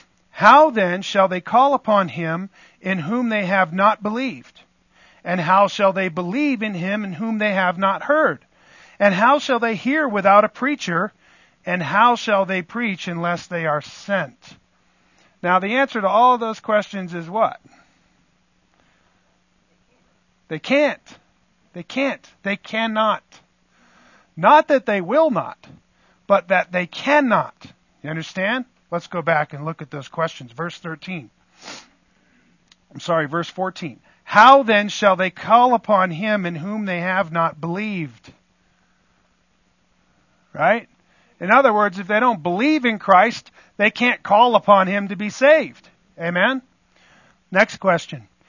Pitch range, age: 175-240 Hz, 50-69